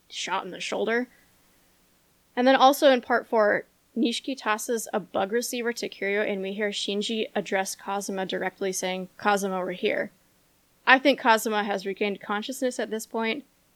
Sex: female